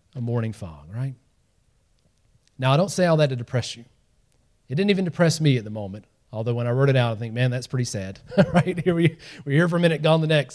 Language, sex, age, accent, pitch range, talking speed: English, male, 30-49, American, 135-170 Hz, 250 wpm